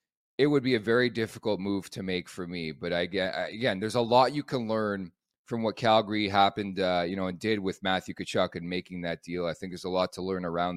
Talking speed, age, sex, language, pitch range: 245 wpm, 30-49, male, English, 90-115 Hz